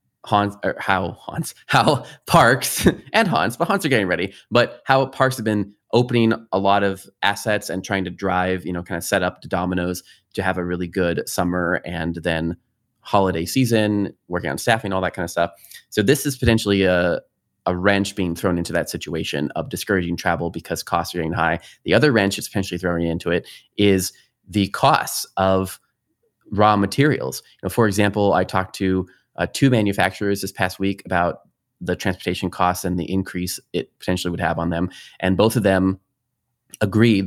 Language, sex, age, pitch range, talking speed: English, male, 20-39, 90-105 Hz, 190 wpm